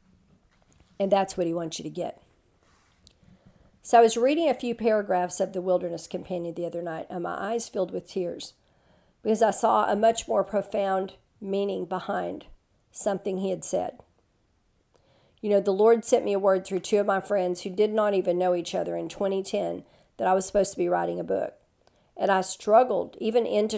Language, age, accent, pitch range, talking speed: English, 50-69, American, 190-225 Hz, 195 wpm